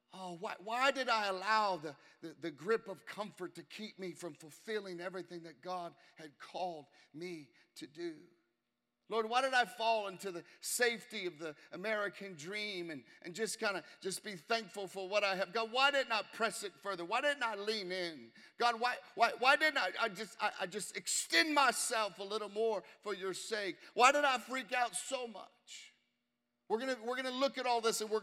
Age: 50-69